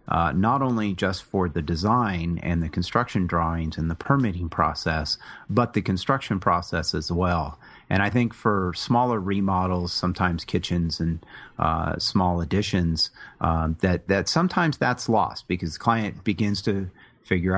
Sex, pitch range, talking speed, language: male, 90-110 Hz, 155 wpm, English